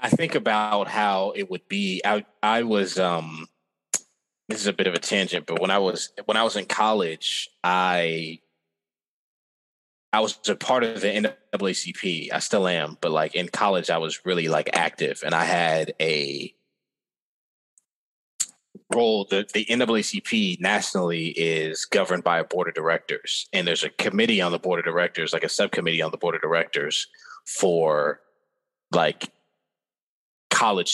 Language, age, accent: English, 20-39, American